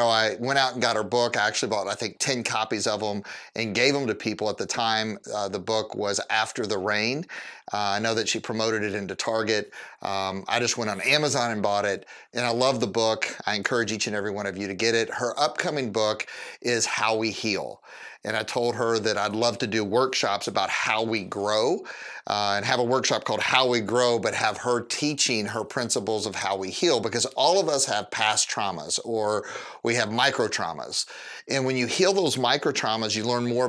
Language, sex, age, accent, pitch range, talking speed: English, male, 30-49, American, 105-120 Hz, 225 wpm